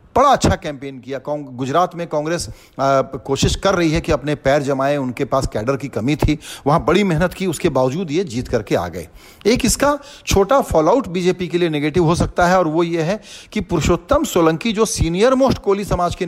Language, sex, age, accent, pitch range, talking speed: Hindi, male, 40-59, native, 140-190 Hz, 215 wpm